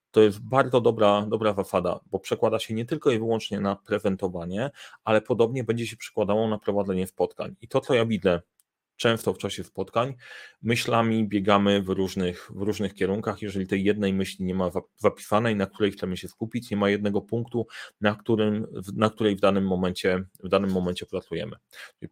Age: 30-49